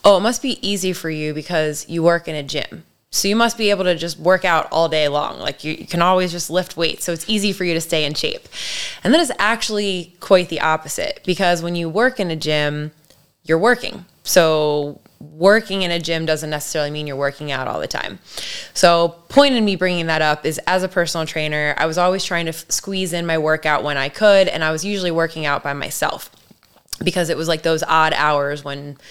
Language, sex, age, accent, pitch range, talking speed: English, female, 20-39, American, 155-185 Hz, 235 wpm